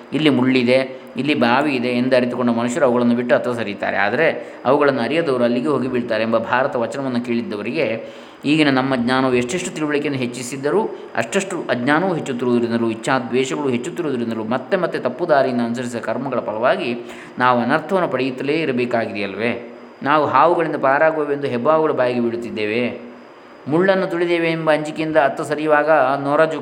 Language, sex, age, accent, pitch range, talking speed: Kannada, male, 20-39, native, 120-150 Hz, 125 wpm